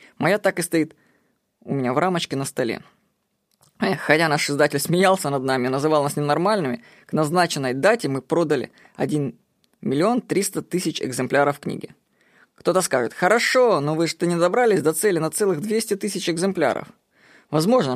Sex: female